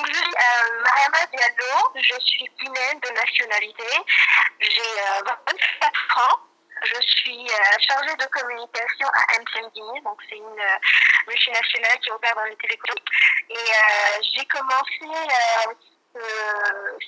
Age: 20-39